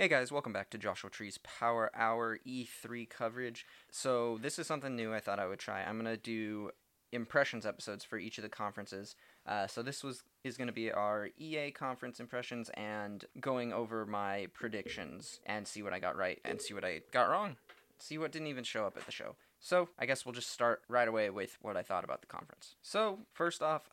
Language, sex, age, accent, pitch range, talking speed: English, male, 20-39, American, 110-135 Hz, 220 wpm